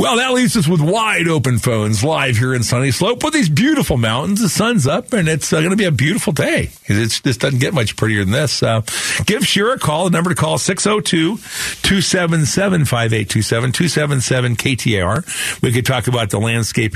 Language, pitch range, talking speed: English, 110-150 Hz, 195 wpm